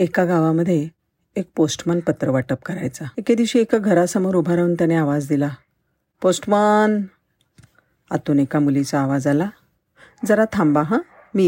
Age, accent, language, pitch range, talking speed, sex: 50-69, native, Marathi, 140-180 Hz, 130 wpm, female